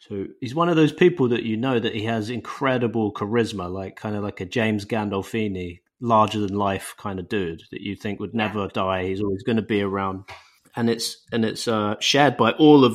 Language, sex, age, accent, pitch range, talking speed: English, male, 30-49, British, 100-115 Hz, 225 wpm